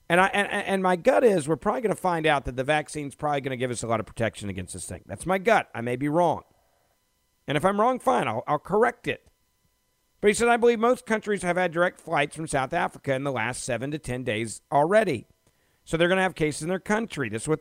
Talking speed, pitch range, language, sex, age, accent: 270 wpm, 115-160 Hz, English, male, 50-69, American